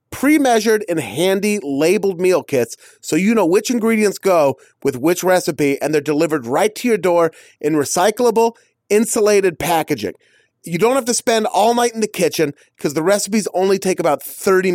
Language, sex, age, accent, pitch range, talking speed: English, male, 30-49, American, 155-210 Hz, 175 wpm